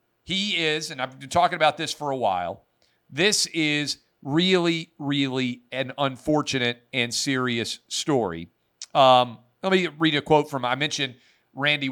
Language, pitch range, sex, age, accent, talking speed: English, 120-155 Hz, male, 40-59, American, 150 wpm